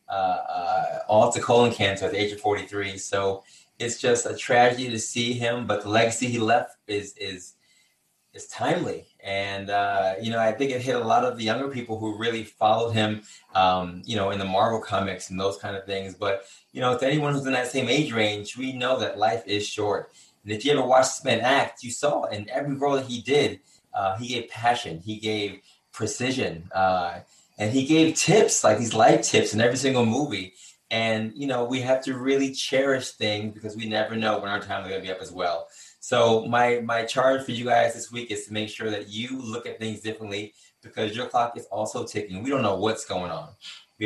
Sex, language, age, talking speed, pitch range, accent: male, English, 20-39, 225 wpm, 100-125 Hz, American